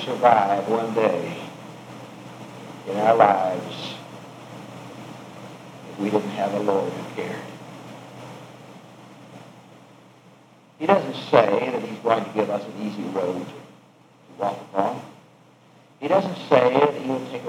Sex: male